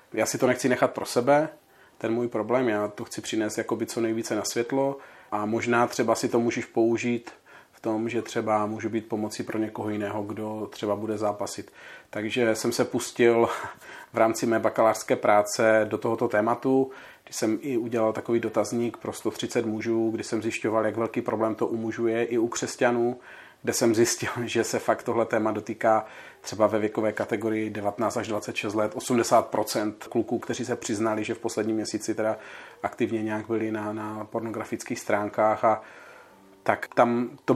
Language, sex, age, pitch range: Czech, male, 40-59, 110-120 Hz